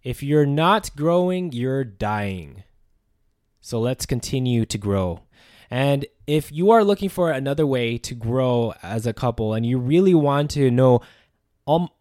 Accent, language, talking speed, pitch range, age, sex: American, English, 155 wpm, 110-145 Hz, 20-39, male